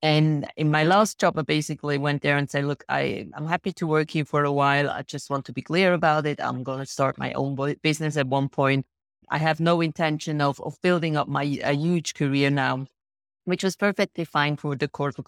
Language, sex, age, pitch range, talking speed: English, female, 30-49, 145-170 Hz, 230 wpm